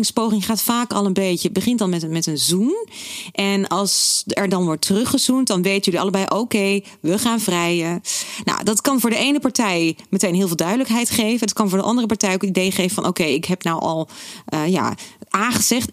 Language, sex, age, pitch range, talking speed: Dutch, female, 30-49, 180-230 Hz, 210 wpm